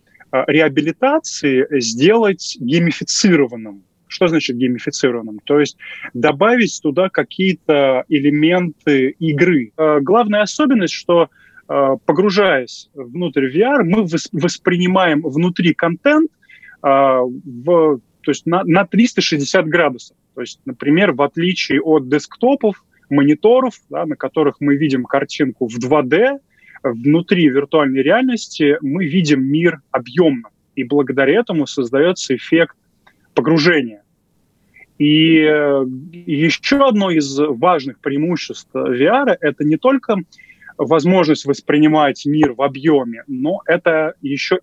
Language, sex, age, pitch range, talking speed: Russian, male, 20-39, 140-180 Hz, 95 wpm